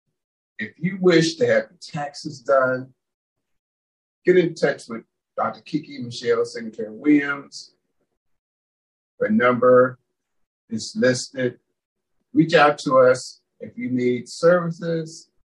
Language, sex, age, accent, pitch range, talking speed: English, male, 50-69, American, 120-160 Hz, 115 wpm